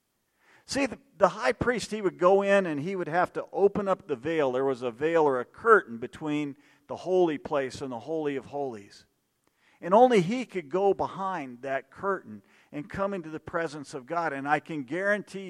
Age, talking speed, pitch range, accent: 50-69, 200 wpm, 145-195 Hz, American